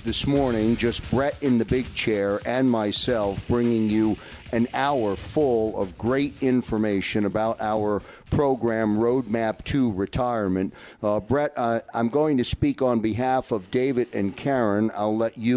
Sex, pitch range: male, 100-125 Hz